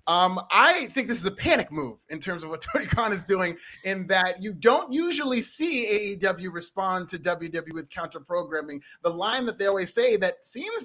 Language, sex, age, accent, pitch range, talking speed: English, male, 30-49, American, 170-245 Hz, 200 wpm